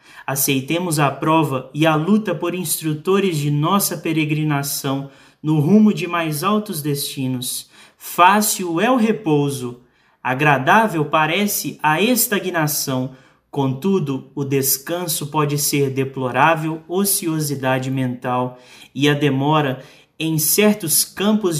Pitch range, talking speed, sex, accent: 140-175 Hz, 110 wpm, male, Brazilian